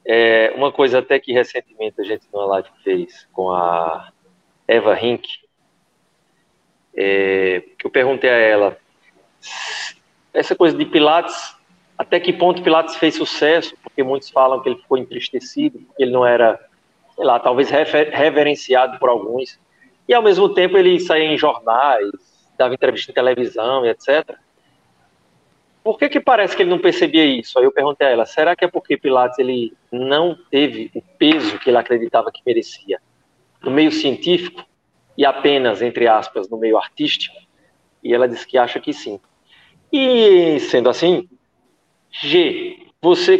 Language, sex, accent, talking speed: Portuguese, male, Brazilian, 155 wpm